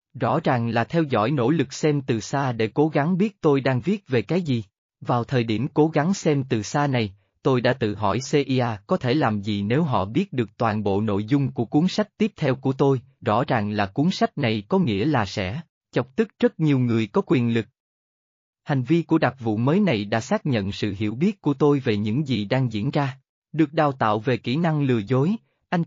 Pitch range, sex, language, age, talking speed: 115-155 Hz, male, Vietnamese, 20-39, 235 wpm